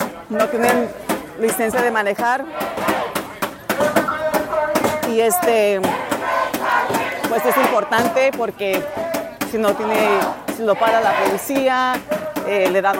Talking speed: 100 wpm